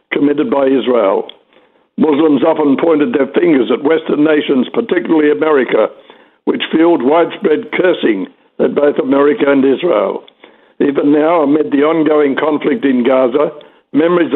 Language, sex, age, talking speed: English, male, 60-79, 130 wpm